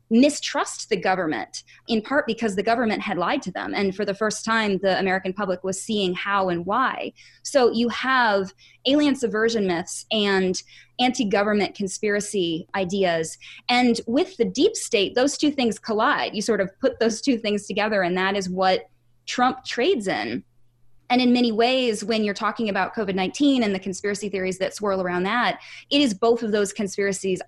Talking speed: 180 wpm